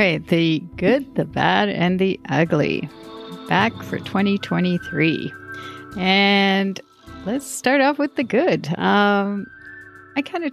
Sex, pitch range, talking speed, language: female, 155-195 Hz, 120 wpm, English